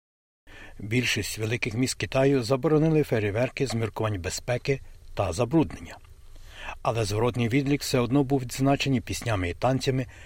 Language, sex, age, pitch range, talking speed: Ukrainian, male, 60-79, 105-140 Hz, 115 wpm